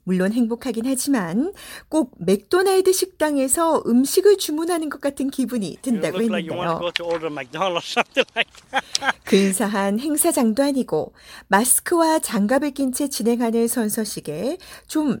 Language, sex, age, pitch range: Korean, female, 40-59, 205-285 Hz